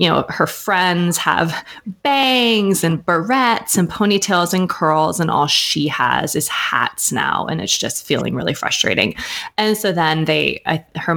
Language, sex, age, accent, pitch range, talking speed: English, female, 20-39, American, 155-195 Hz, 160 wpm